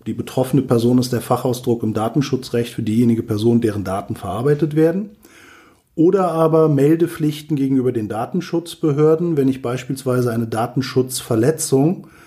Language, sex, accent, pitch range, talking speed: German, male, German, 125-155 Hz, 125 wpm